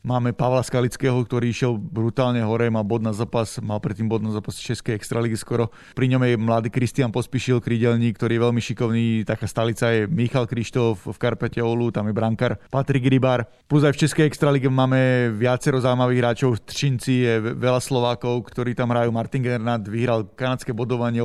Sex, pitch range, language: male, 115-130 Hz, Slovak